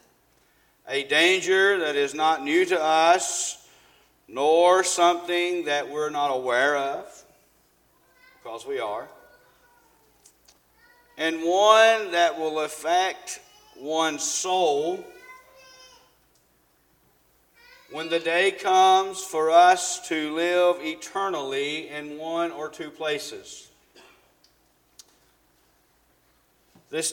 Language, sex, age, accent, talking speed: English, male, 50-69, American, 90 wpm